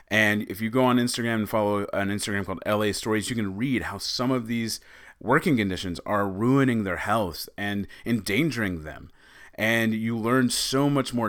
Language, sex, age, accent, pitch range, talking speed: English, male, 30-49, American, 95-120 Hz, 185 wpm